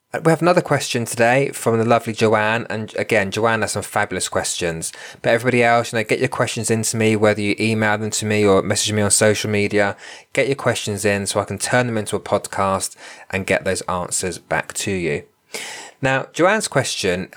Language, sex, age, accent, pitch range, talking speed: English, male, 20-39, British, 95-115 Hz, 205 wpm